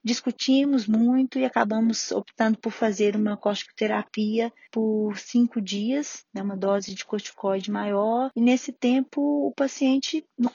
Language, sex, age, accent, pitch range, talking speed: Portuguese, female, 20-39, Brazilian, 215-260 Hz, 135 wpm